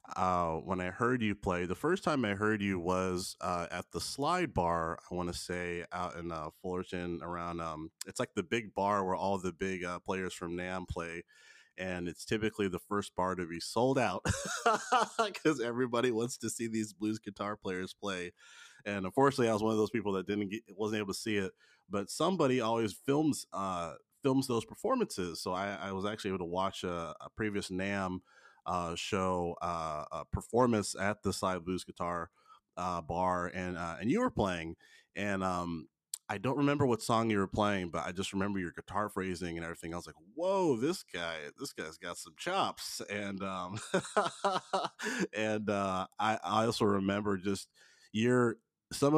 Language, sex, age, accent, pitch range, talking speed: English, male, 30-49, American, 90-110 Hz, 190 wpm